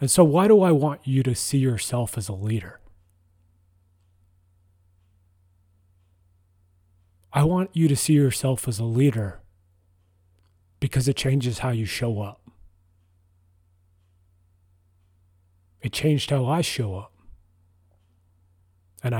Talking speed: 115 wpm